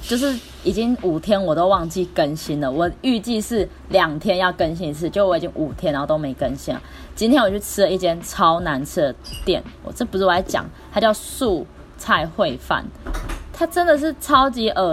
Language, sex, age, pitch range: Chinese, female, 10-29, 150-200 Hz